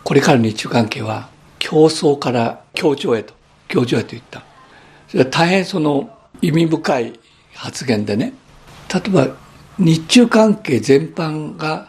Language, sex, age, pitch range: Japanese, male, 60-79, 125-185 Hz